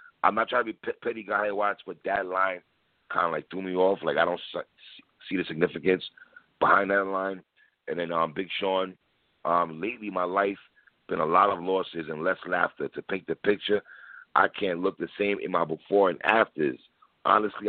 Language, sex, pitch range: English, male, 90-110 Hz